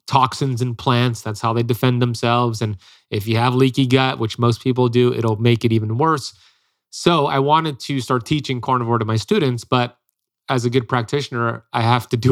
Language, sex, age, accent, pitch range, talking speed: English, male, 30-49, American, 120-135 Hz, 205 wpm